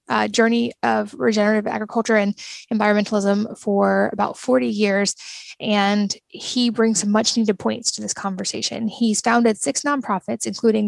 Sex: female